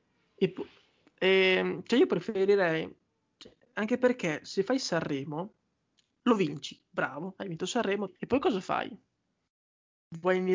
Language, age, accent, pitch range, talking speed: Italian, 20-39, native, 165-190 Hz, 115 wpm